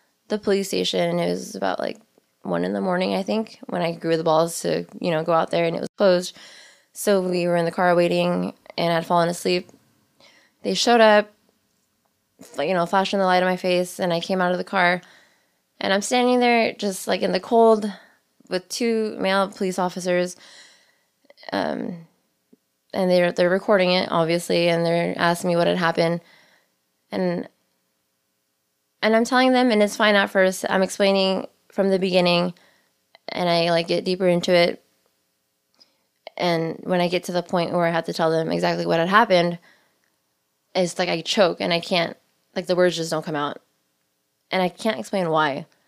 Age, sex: 20-39, female